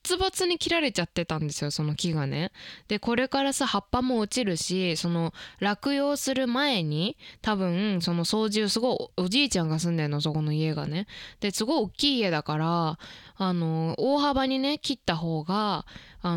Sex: female